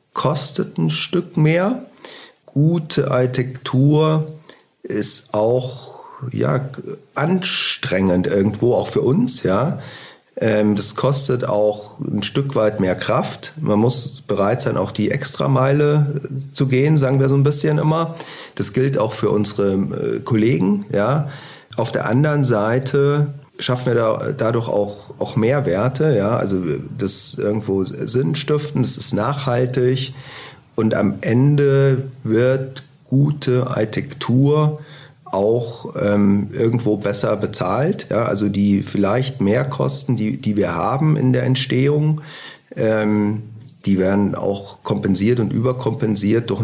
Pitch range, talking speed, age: 105-145 Hz, 120 wpm, 40-59